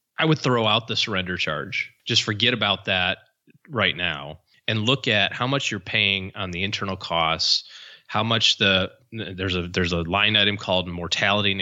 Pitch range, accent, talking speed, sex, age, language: 95-120 Hz, American, 185 wpm, male, 30-49, English